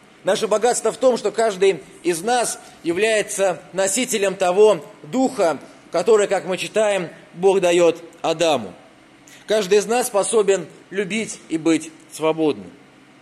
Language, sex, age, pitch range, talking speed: Russian, male, 20-39, 175-215 Hz, 125 wpm